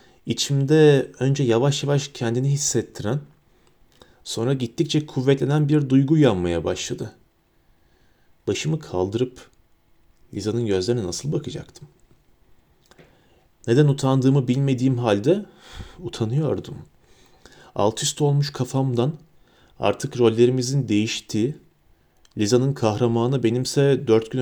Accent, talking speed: native, 90 wpm